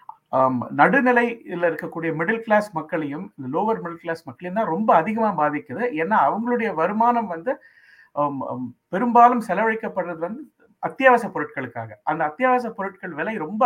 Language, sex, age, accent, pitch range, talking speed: Tamil, male, 50-69, native, 140-205 Hz, 130 wpm